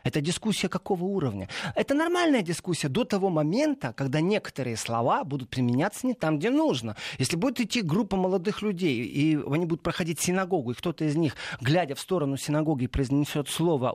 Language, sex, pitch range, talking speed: Russian, male, 145-195 Hz, 170 wpm